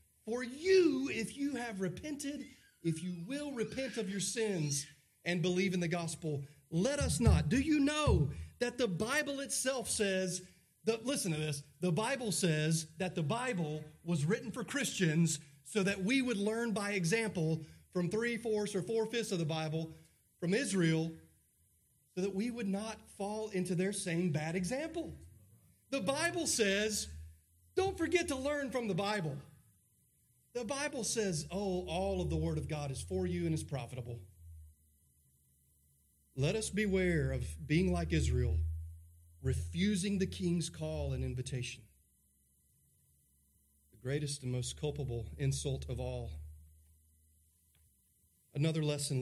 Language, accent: English, American